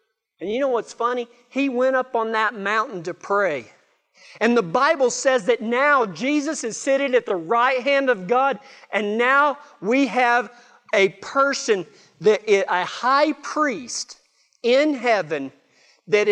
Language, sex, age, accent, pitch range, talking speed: English, male, 40-59, American, 180-245 Hz, 155 wpm